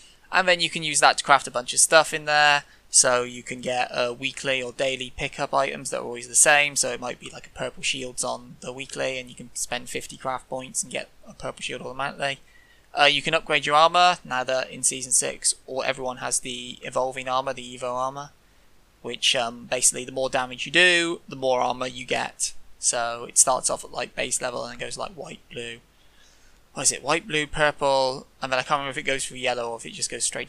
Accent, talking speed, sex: British, 240 wpm, male